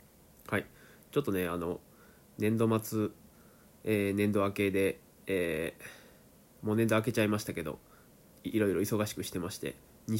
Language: Japanese